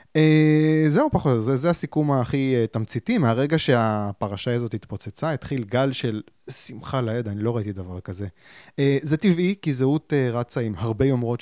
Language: Hebrew